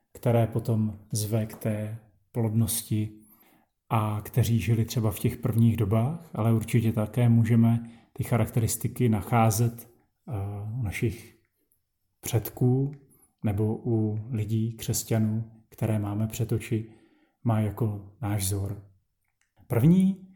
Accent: native